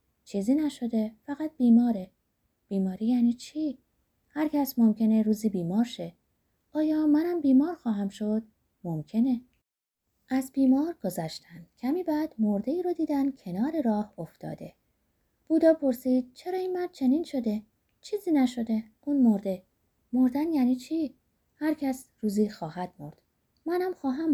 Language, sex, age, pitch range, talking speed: Persian, female, 20-39, 195-280 Hz, 125 wpm